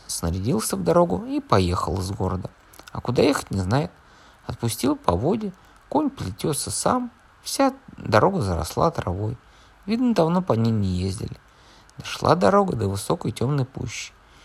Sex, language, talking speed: male, Russian, 140 wpm